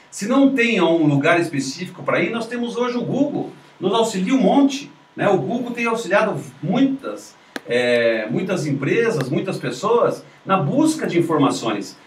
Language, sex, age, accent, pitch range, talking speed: Portuguese, male, 50-69, Brazilian, 150-225 Hz, 155 wpm